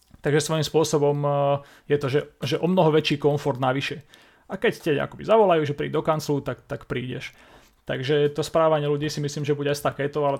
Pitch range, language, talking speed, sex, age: 130-150 Hz, Slovak, 200 wpm, male, 30-49